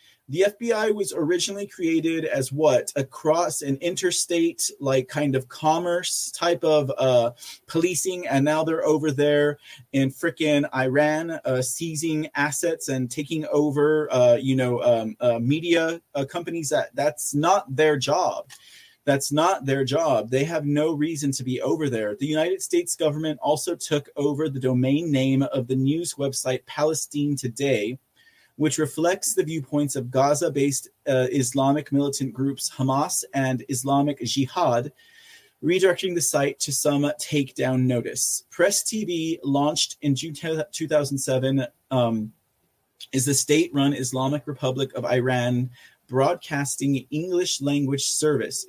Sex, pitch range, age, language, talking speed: male, 130-160 Hz, 30-49, English, 135 wpm